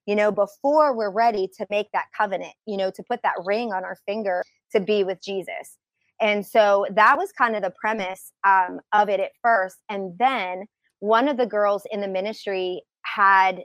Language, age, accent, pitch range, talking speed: English, 30-49, American, 190-220 Hz, 200 wpm